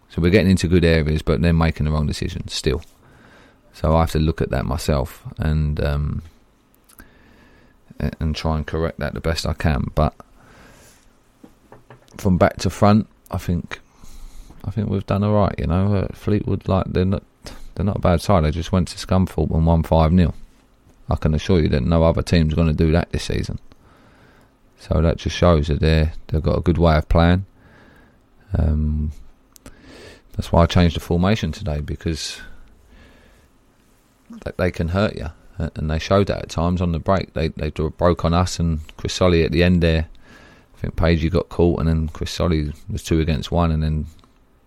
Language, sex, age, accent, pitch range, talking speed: English, male, 30-49, British, 75-95 Hz, 190 wpm